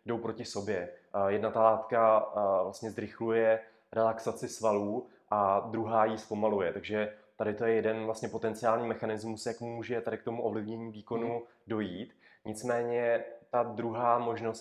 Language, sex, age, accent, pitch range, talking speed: Czech, male, 20-39, native, 110-120 Hz, 135 wpm